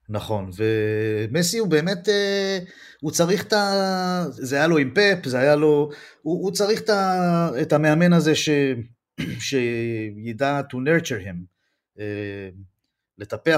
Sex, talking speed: male, 125 wpm